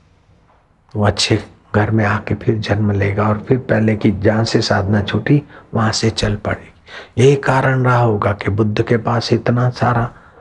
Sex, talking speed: male, 175 wpm